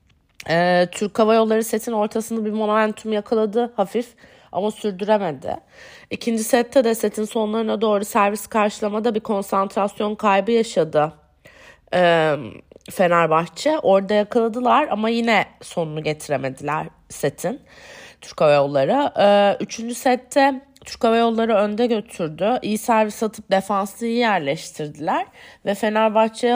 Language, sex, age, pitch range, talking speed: Turkish, female, 30-49, 185-225 Hz, 110 wpm